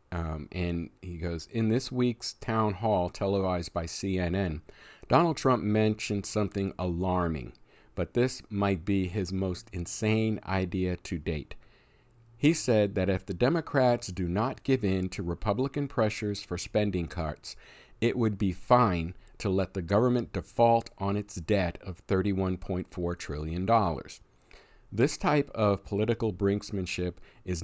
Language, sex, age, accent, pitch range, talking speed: English, male, 50-69, American, 90-110 Hz, 140 wpm